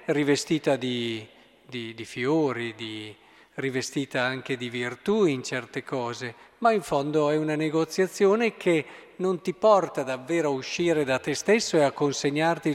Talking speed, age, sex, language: 140 wpm, 50-69, male, Italian